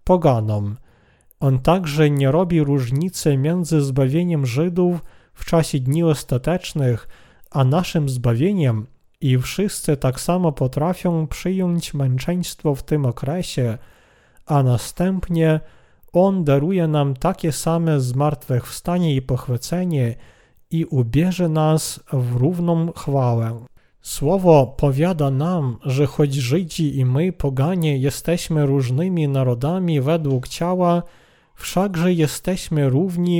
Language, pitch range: Polish, 130-165 Hz